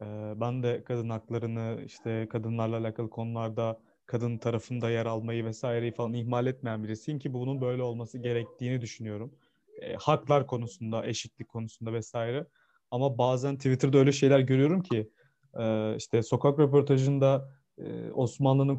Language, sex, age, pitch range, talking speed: Turkish, male, 30-49, 120-145 Hz, 125 wpm